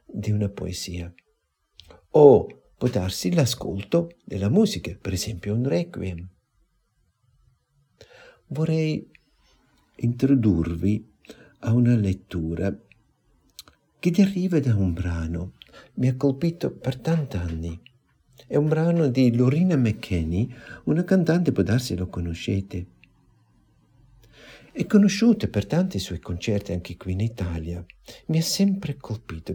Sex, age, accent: male, 60-79, native